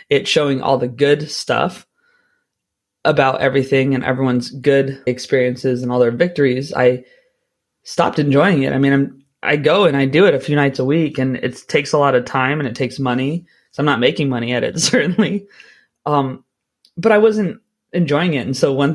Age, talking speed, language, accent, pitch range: 20-39, 195 wpm, English, American, 130-150 Hz